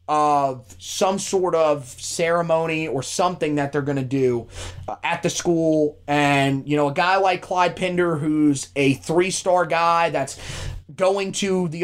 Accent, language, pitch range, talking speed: American, English, 145-190 Hz, 150 wpm